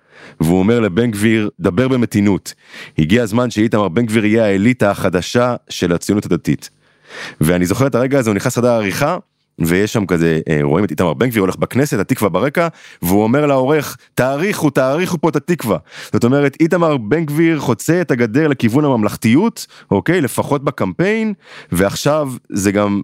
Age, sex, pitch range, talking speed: 30-49, male, 80-140 Hz, 160 wpm